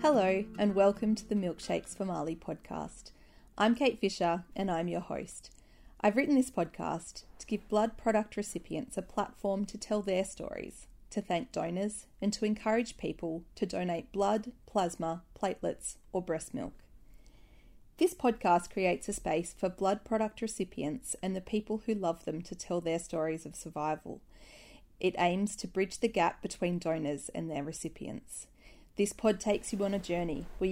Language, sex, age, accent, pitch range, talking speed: English, female, 30-49, Australian, 170-215 Hz, 170 wpm